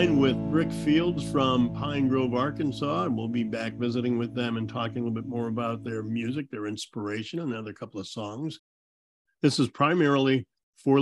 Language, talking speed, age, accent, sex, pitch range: English, 180 wpm, 50-69, American, male, 110-135 Hz